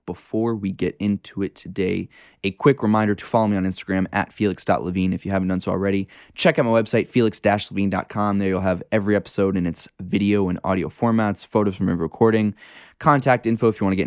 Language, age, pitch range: English, 20-39, 100-115 Hz